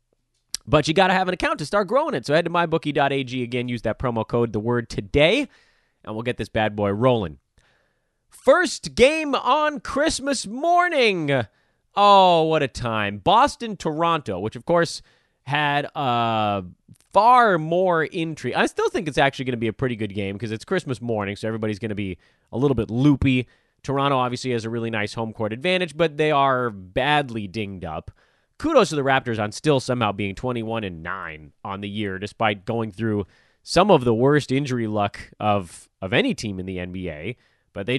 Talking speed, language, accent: 190 wpm, English, American